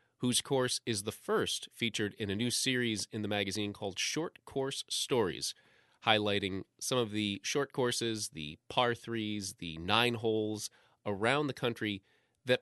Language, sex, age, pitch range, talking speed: English, male, 30-49, 100-130 Hz, 155 wpm